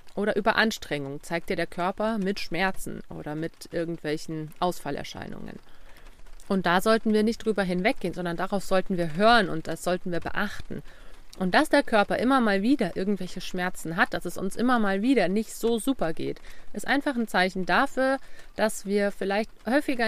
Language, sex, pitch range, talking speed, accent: German, female, 175-215 Hz, 175 wpm, German